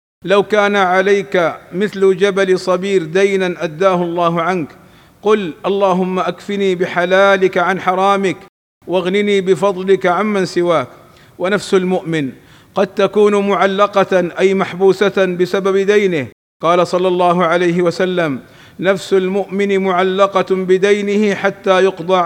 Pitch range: 180-200 Hz